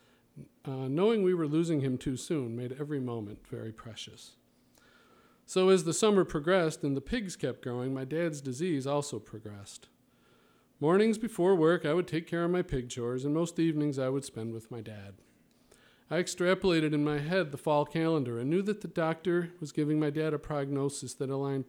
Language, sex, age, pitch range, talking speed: English, male, 40-59, 125-170 Hz, 190 wpm